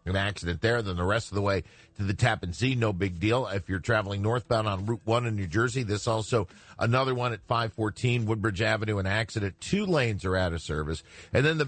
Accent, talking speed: American, 240 wpm